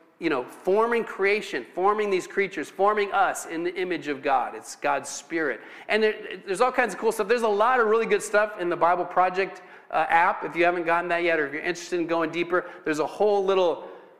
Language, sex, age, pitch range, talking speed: English, male, 40-59, 165-225 Hz, 235 wpm